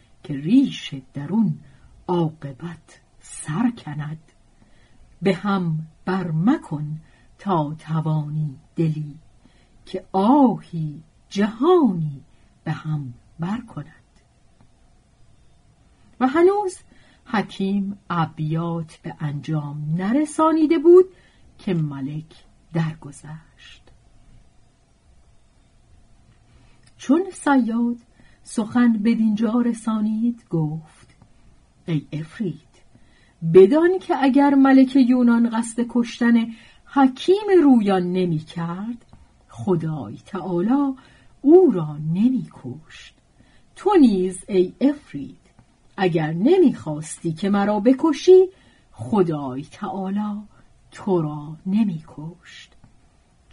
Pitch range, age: 155-240 Hz, 50-69